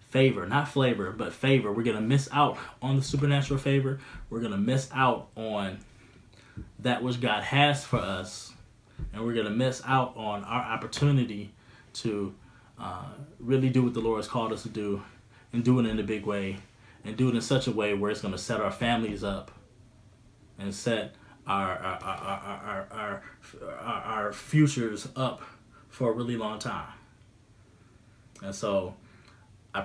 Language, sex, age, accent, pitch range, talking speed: English, male, 20-39, American, 105-125 Hz, 175 wpm